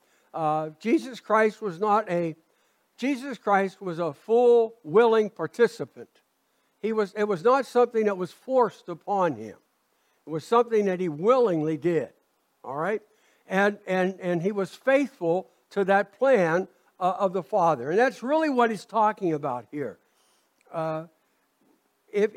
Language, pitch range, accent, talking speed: English, 170-230 Hz, American, 150 wpm